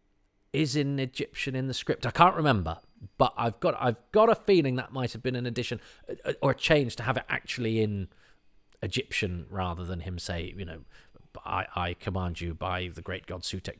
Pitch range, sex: 90-120 Hz, male